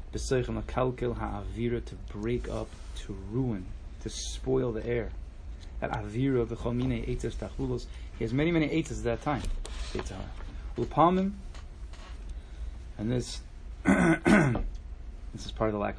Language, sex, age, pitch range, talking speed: English, male, 20-39, 75-125 Hz, 120 wpm